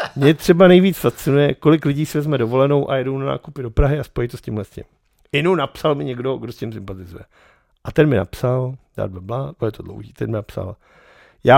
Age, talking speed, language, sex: 50-69, 220 wpm, Czech, male